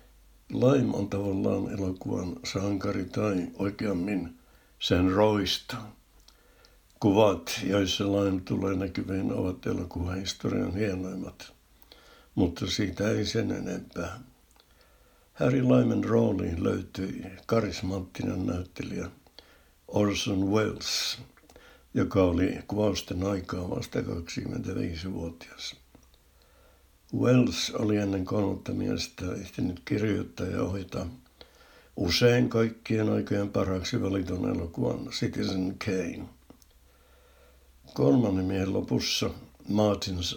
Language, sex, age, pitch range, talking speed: Finnish, male, 60-79, 90-105 Hz, 85 wpm